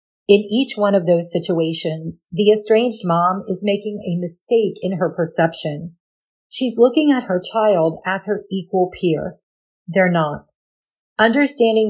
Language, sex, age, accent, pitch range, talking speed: English, female, 40-59, American, 170-220 Hz, 140 wpm